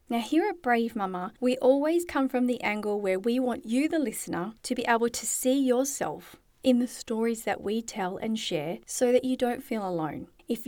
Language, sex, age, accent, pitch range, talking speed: English, female, 40-59, Australian, 215-270 Hz, 215 wpm